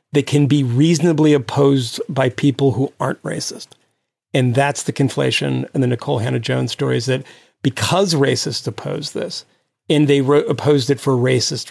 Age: 40-59